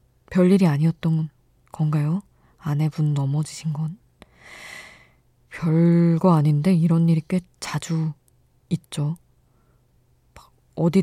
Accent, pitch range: native, 150-180 Hz